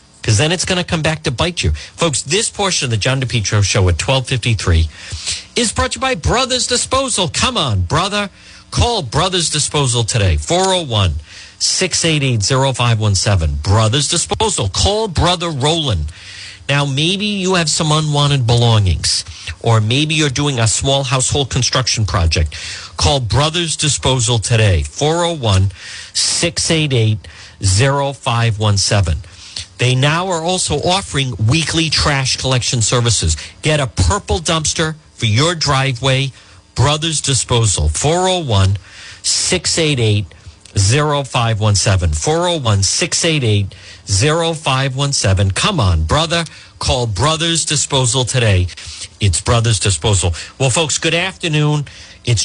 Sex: male